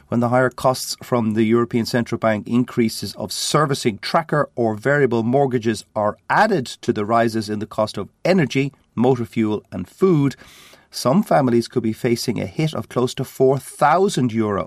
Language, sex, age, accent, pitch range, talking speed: English, male, 40-59, Irish, 105-130 Hz, 170 wpm